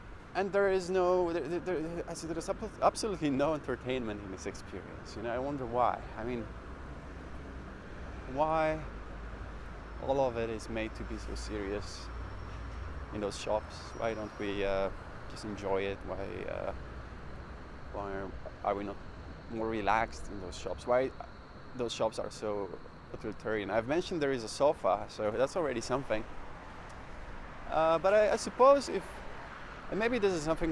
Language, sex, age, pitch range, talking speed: English, male, 20-39, 85-120 Hz, 155 wpm